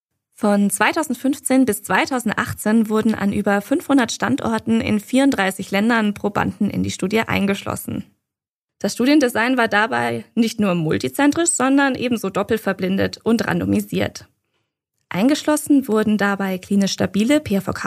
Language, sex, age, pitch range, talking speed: German, female, 20-39, 195-250 Hz, 120 wpm